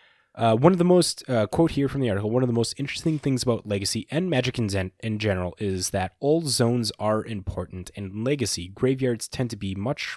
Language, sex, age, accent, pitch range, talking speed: English, male, 20-39, American, 95-125 Hz, 220 wpm